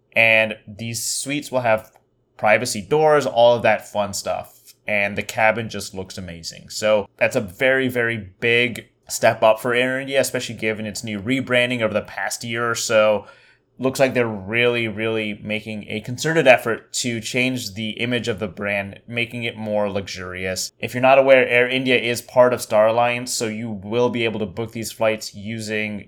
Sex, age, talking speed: male, 20-39, 185 wpm